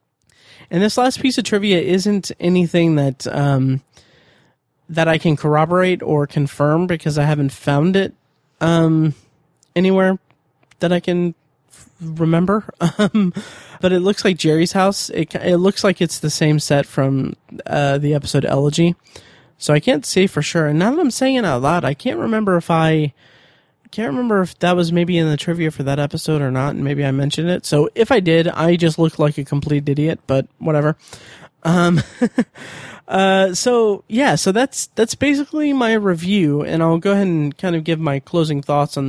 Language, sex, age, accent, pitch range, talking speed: English, male, 20-39, American, 145-185 Hz, 185 wpm